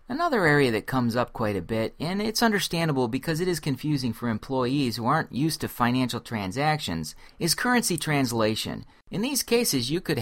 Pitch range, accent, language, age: 110-155 Hz, American, English, 40-59